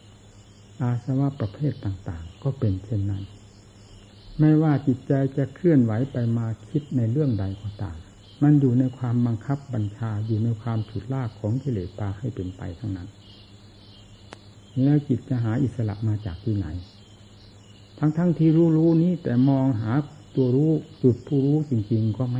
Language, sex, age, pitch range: Thai, male, 60-79, 100-130 Hz